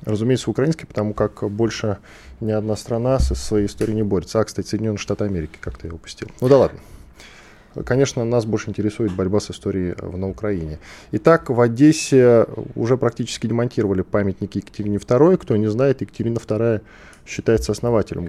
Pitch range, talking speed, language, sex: 100-130 Hz, 160 wpm, Russian, male